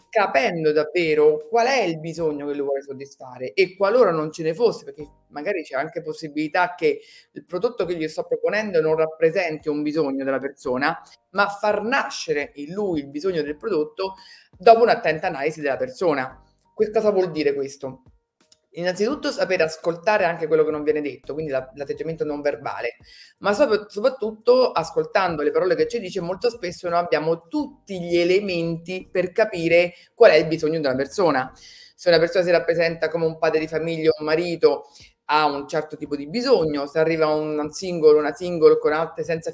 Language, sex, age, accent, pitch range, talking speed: Italian, female, 30-49, native, 155-205 Hz, 180 wpm